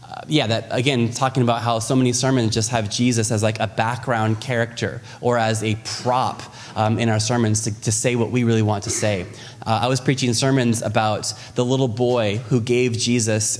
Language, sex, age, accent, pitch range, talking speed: English, male, 20-39, American, 115-140 Hz, 205 wpm